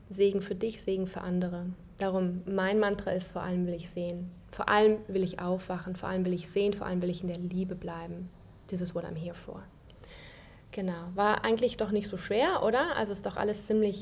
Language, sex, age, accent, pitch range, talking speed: German, female, 20-39, German, 185-210 Hz, 225 wpm